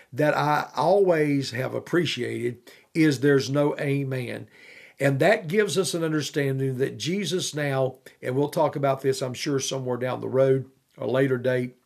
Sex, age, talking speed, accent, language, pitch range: male, 50-69, 160 wpm, American, English, 130-160 Hz